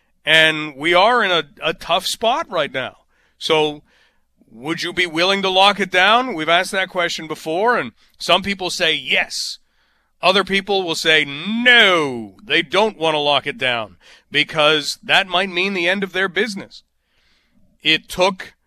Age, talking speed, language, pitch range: 40-59, 165 wpm, English, 145-185 Hz